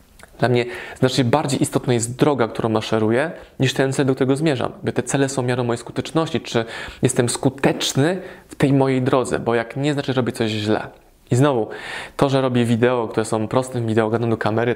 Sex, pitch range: male, 115-140 Hz